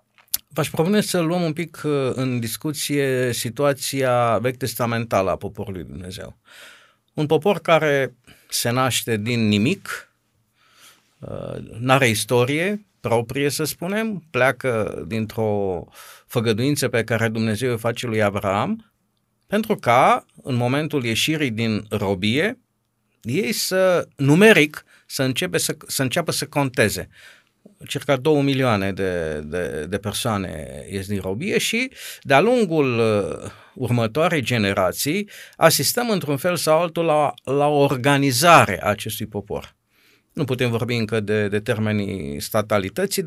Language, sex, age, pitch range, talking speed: Romanian, male, 50-69, 110-155 Hz, 120 wpm